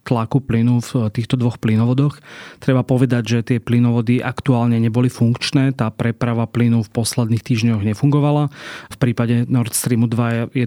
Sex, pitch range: male, 115-125 Hz